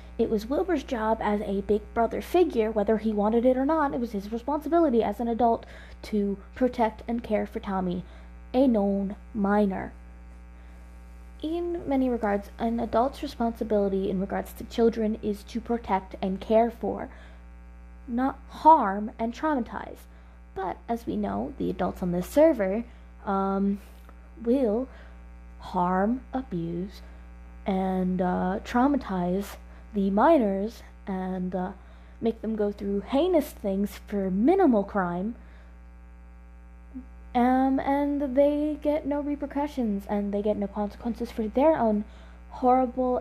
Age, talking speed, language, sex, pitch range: 20-39, 130 wpm, English, female, 180-245 Hz